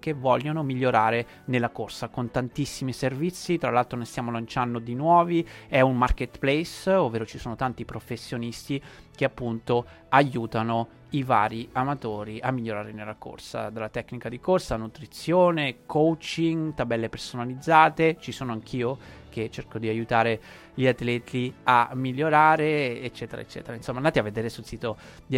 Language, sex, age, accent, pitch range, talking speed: Italian, male, 20-39, native, 115-155 Hz, 145 wpm